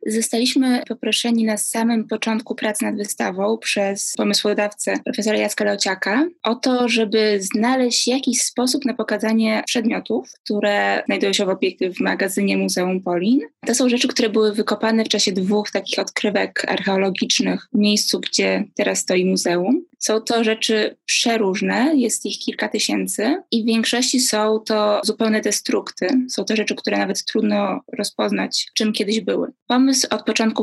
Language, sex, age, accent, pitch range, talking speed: Polish, female, 20-39, native, 205-235 Hz, 150 wpm